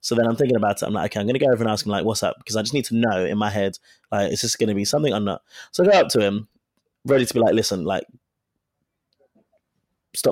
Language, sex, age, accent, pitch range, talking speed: English, male, 20-39, British, 110-140 Hz, 295 wpm